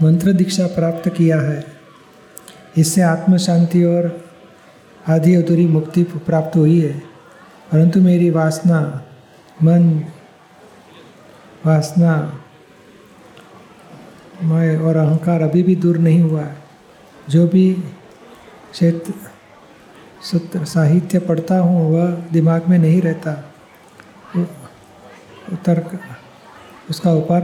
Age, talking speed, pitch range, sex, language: 50-69, 65 wpm, 160-180 Hz, male, Gujarati